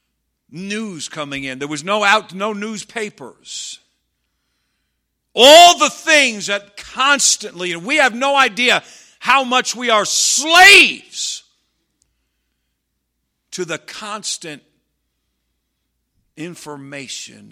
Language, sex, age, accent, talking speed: English, male, 50-69, American, 95 wpm